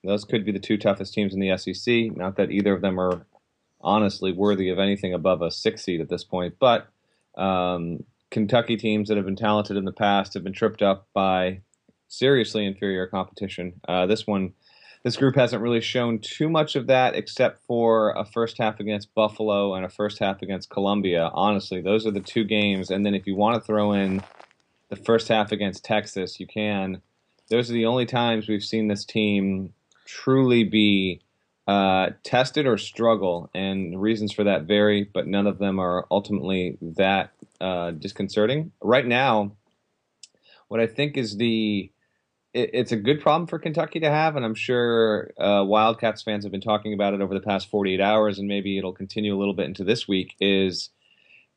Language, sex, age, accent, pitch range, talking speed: English, male, 30-49, American, 95-110 Hz, 190 wpm